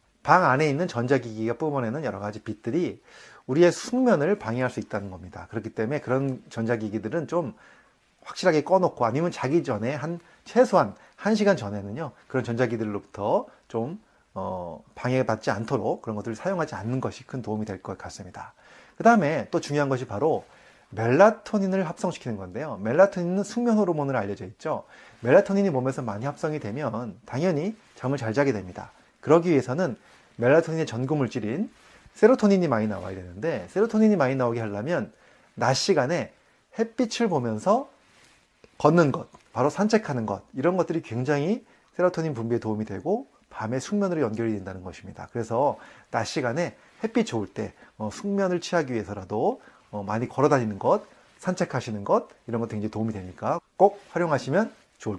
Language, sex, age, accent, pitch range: Korean, male, 30-49, native, 110-180 Hz